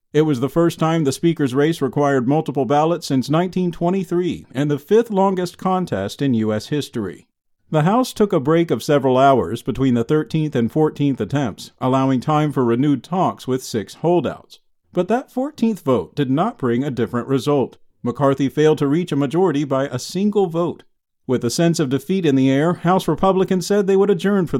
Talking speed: 190 wpm